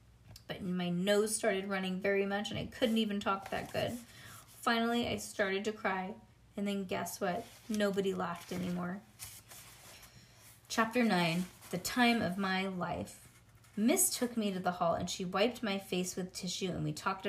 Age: 20-39